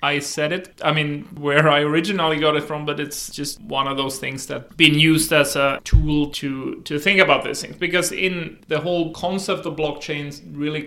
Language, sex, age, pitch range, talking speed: English, male, 30-49, 145-185 Hz, 210 wpm